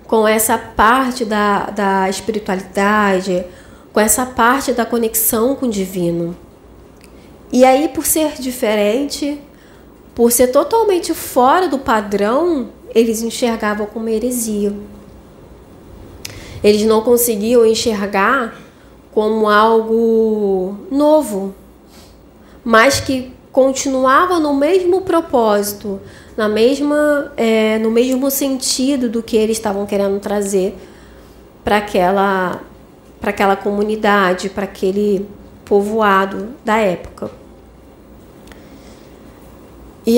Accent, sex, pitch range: Brazilian, female, 205-265 Hz